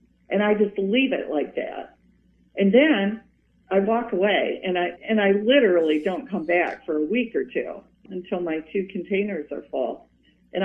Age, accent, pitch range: 50-69, American, 150-205 Hz